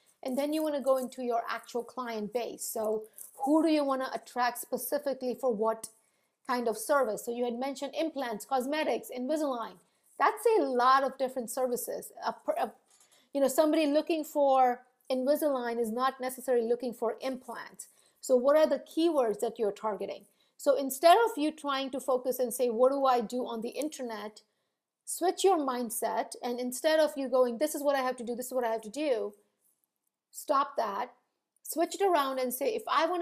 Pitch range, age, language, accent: 235-285 Hz, 50-69, English, Indian